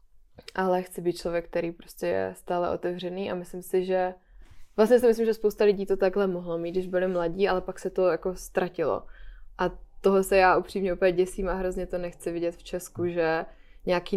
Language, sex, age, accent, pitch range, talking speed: Czech, female, 20-39, native, 175-190 Hz, 205 wpm